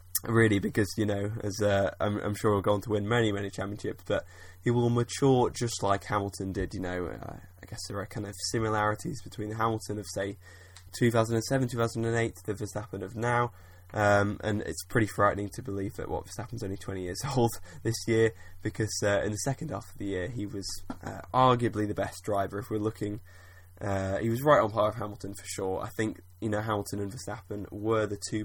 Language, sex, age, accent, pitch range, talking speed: English, male, 10-29, British, 100-115 Hz, 210 wpm